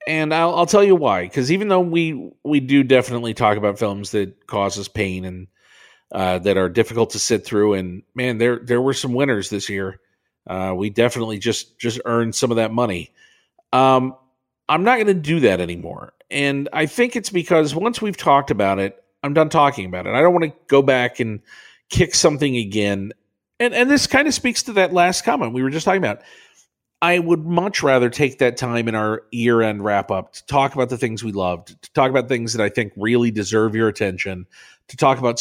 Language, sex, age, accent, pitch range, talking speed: English, male, 40-59, American, 105-155 Hz, 215 wpm